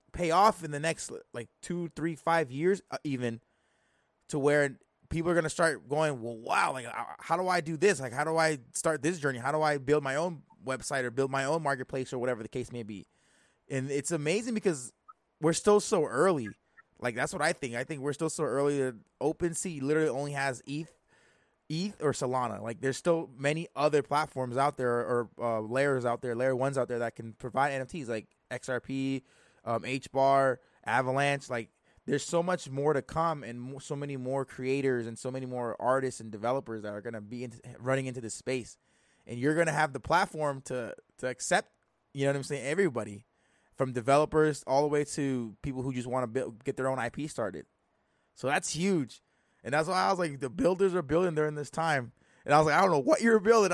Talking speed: 215 wpm